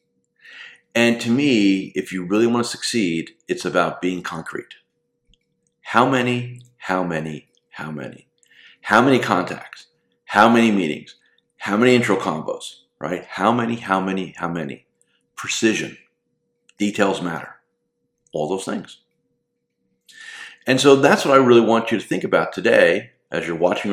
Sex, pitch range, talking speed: male, 95-125 Hz, 145 wpm